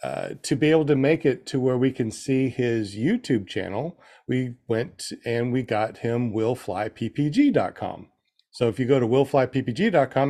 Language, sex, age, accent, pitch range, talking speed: English, male, 40-59, American, 115-145 Hz, 165 wpm